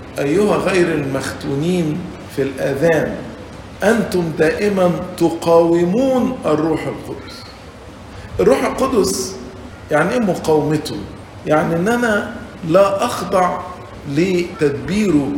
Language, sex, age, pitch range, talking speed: English, male, 50-69, 135-185 Hz, 80 wpm